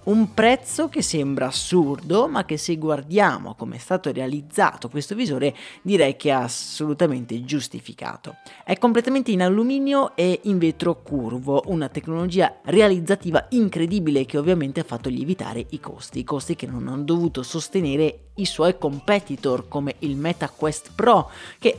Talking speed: 145 wpm